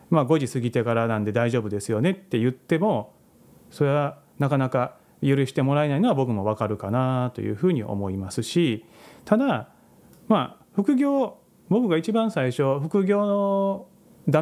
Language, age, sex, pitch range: Japanese, 30-49, male, 120-185 Hz